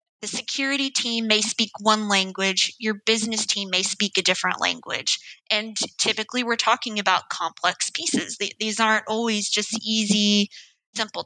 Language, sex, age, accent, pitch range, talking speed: English, female, 20-39, American, 195-225 Hz, 155 wpm